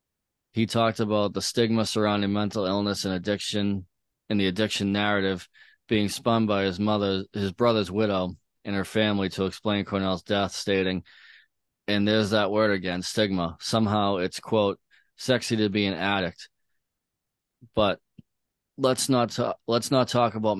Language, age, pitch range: English, 20-39, 95-110 Hz